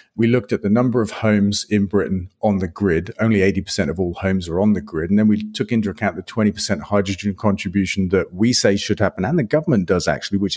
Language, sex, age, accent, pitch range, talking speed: English, male, 40-59, British, 100-115 Hz, 240 wpm